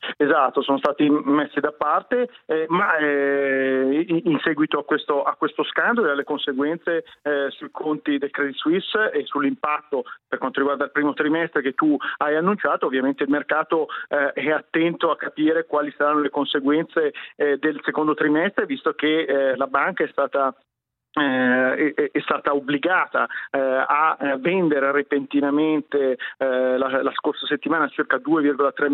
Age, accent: 40-59, native